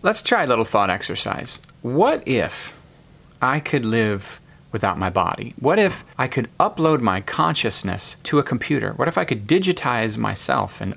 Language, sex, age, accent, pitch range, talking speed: English, male, 30-49, American, 105-140 Hz, 170 wpm